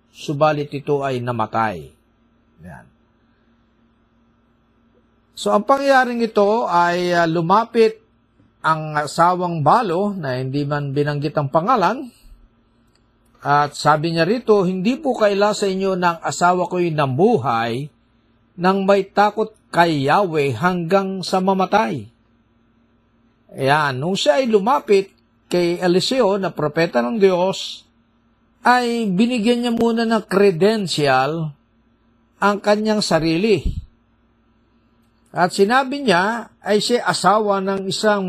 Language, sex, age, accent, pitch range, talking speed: Filipino, male, 50-69, native, 120-195 Hz, 110 wpm